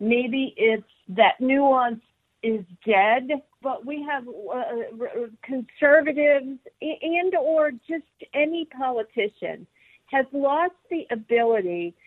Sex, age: female, 50-69